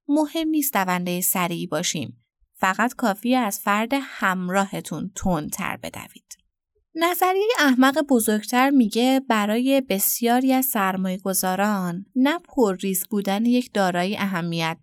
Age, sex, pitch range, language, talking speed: 20-39, female, 195-265 Hz, Persian, 115 wpm